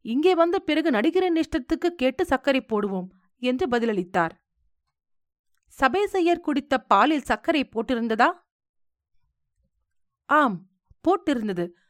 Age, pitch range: 40-59, 215-305 Hz